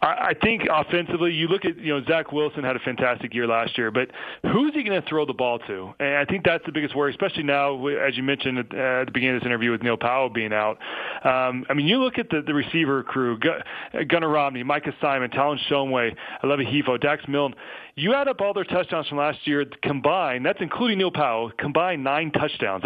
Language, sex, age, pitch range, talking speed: English, male, 30-49, 130-160 Hz, 225 wpm